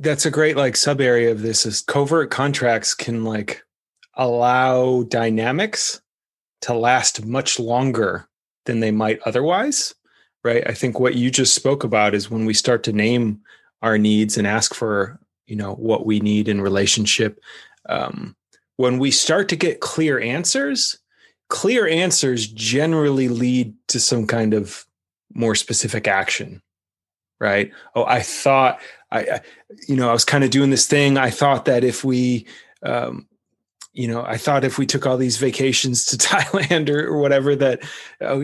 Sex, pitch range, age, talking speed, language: male, 110-135 Hz, 30-49, 165 wpm, English